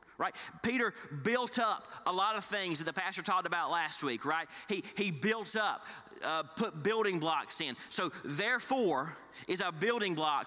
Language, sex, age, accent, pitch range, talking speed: English, male, 30-49, American, 165-215 Hz, 180 wpm